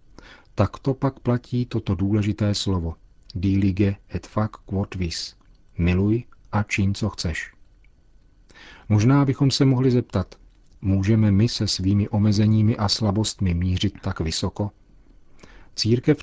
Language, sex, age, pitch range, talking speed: Czech, male, 40-59, 95-115 Hz, 115 wpm